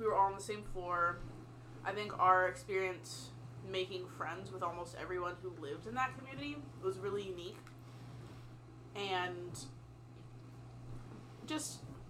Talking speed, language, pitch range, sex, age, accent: 130 wpm, English, 125-185 Hz, female, 20-39, American